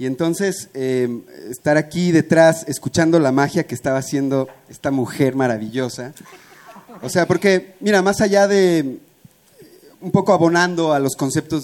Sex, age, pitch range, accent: male, 30-49, 135-175 Hz, Mexican